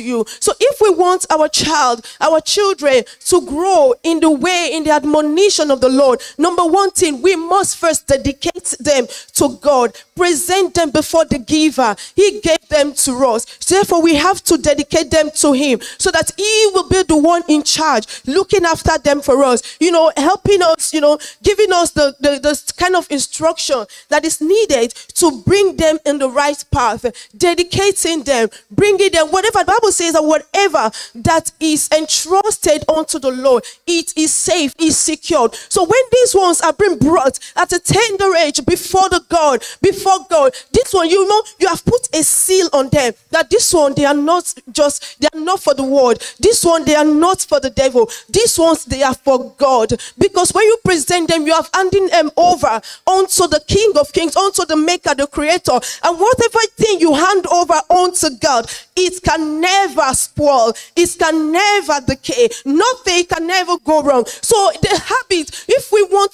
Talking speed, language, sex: 190 wpm, English, female